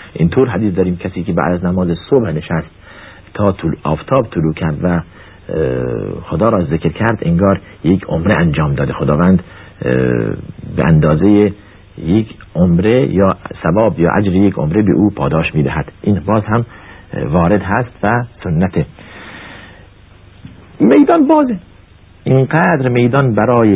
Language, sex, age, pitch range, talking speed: Persian, male, 50-69, 90-115 Hz, 130 wpm